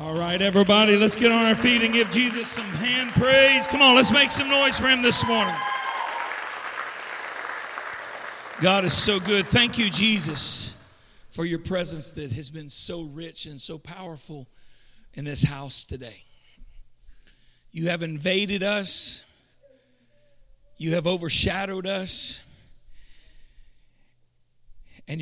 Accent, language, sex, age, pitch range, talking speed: American, English, male, 50-69, 110-180 Hz, 130 wpm